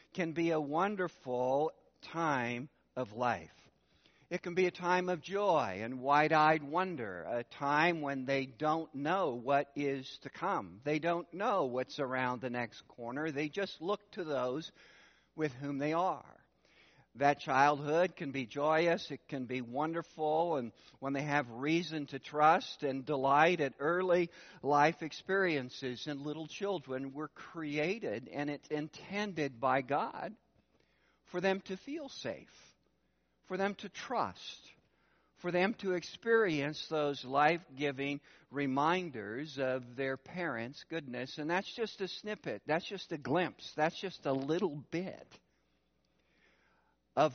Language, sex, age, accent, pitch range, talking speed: English, male, 60-79, American, 135-180 Hz, 140 wpm